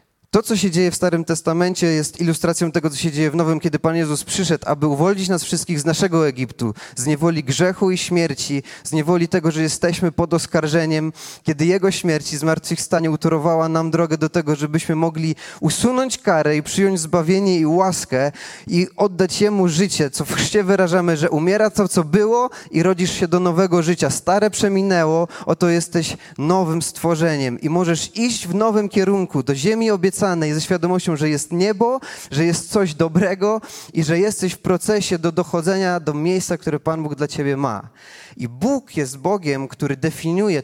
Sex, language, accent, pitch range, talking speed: male, Polish, native, 150-190 Hz, 180 wpm